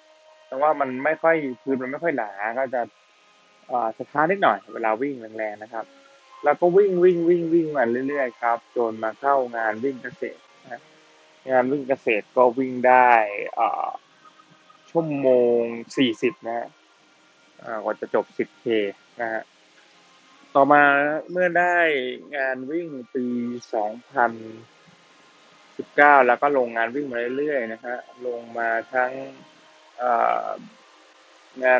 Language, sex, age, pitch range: Thai, male, 20-39, 115-145 Hz